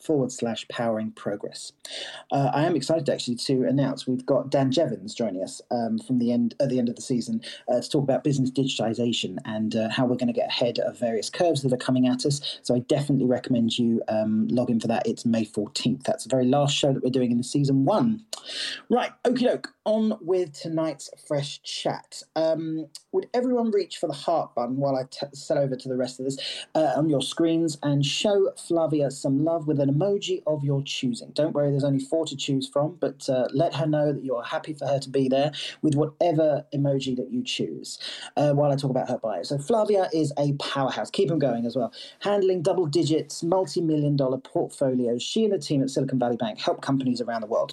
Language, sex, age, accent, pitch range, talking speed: English, male, 40-59, British, 130-160 Hz, 225 wpm